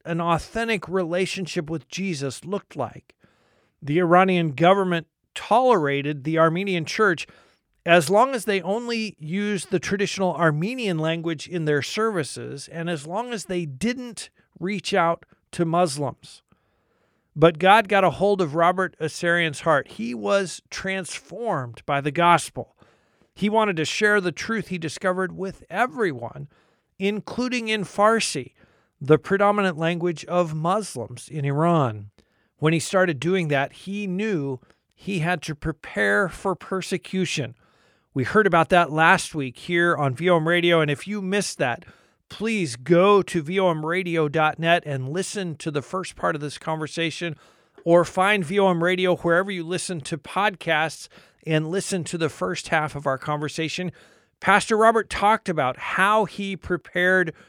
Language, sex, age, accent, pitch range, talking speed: English, male, 50-69, American, 155-190 Hz, 145 wpm